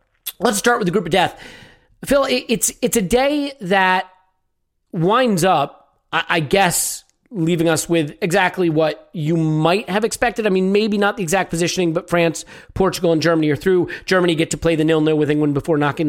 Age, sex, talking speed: 40-59, male, 185 wpm